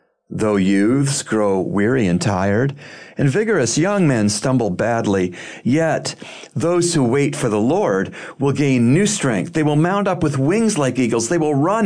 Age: 40-59